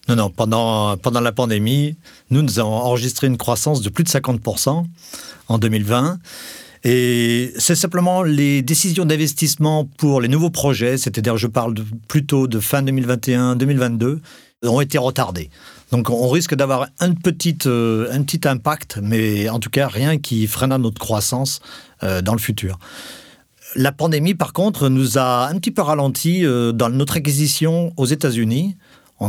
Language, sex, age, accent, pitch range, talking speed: French, male, 40-59, French, 115-150 Hz, 160 wpm